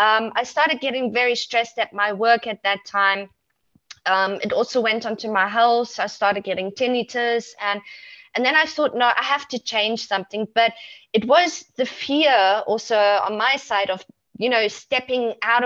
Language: English